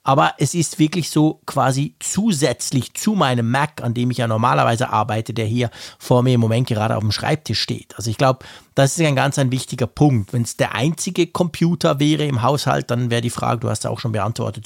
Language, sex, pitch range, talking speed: German, male, 125-155 Hz, 225 wpm